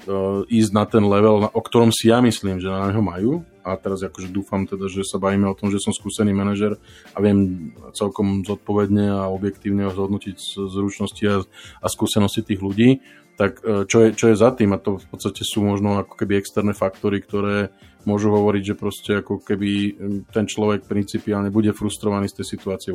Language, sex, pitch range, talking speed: Slovak, male, 100-105 Hz, 185 wpm